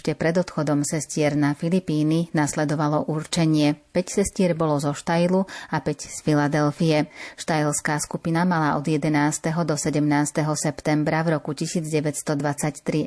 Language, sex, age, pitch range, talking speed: Slovak, female, 30-49, 150-165 Hz, 130 wpm